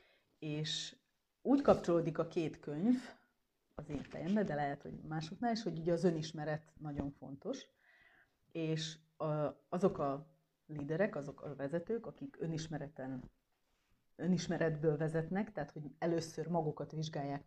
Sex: female